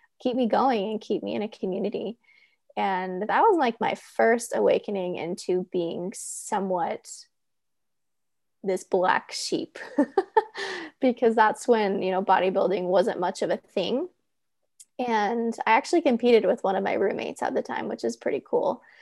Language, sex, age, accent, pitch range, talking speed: English, female, 20-39, American, 210-290 Hz, 155 wpm